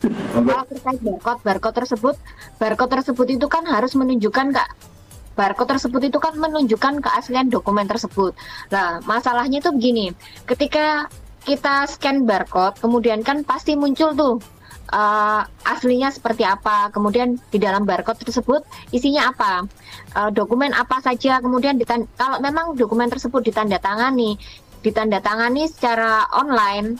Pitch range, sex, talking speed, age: 220-280 Hz, female, 125 wpm, 20-39